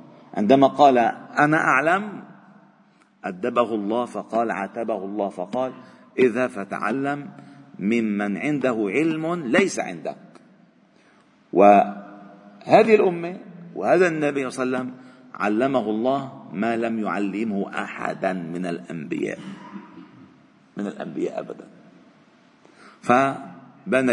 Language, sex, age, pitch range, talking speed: Arabic, male, 50-69, 105-140 Hz, 90 wpm